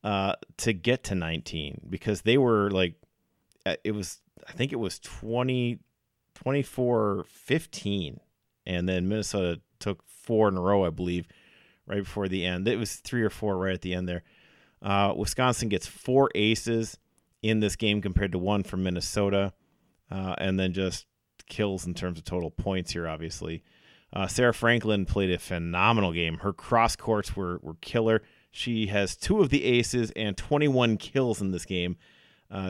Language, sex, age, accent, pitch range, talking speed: English, male, 30-49, American, 90-110 Hz, 170 wpm